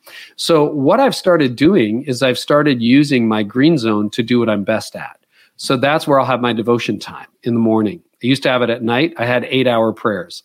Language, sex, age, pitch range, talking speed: English, male, 40-59, 120-145 Hz, 230 wpm